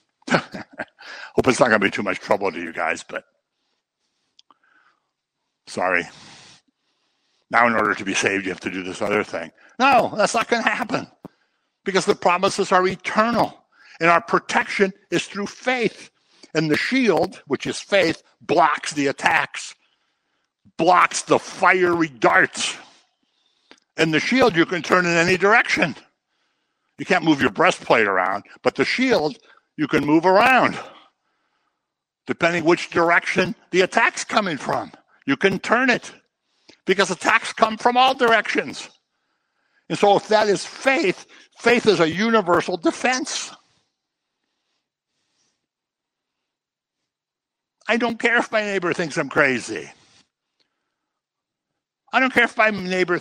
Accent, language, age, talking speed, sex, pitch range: American, English, 60-79, 140 wpm, male, 170-230 Hz